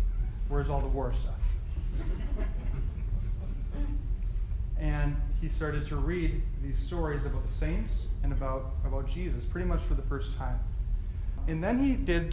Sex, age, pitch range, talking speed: male, 30-49, 75-130 Hz, 140 wpm